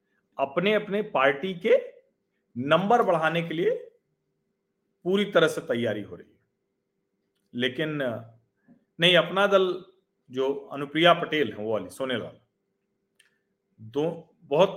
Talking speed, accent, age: 120 wpm, native, 40-59